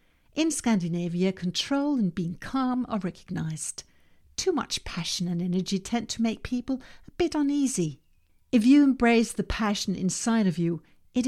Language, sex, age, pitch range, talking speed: English, female, 60-79, 175-240 Hz, 155 wpm